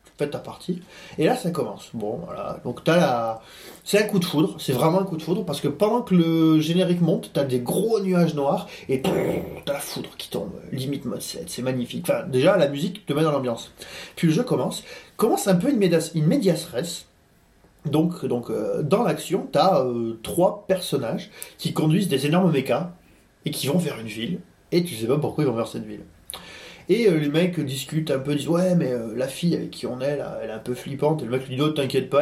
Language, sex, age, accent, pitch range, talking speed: French, male, 30-49, French, 130-180 Hz, 235 wpm